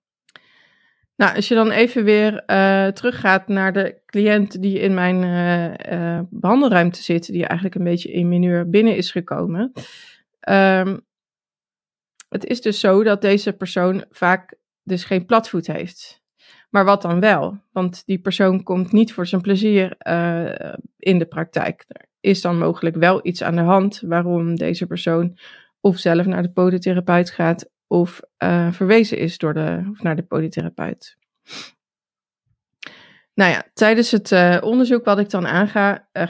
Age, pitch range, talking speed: 20-39, 180-215 Hz, 160 wpm